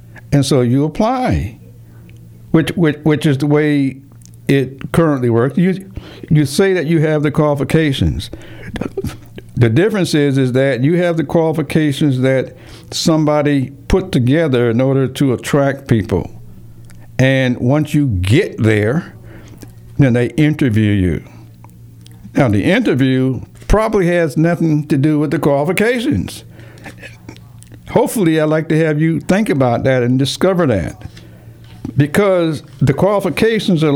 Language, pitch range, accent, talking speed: English, 115-160 Hz, American, 135 wpm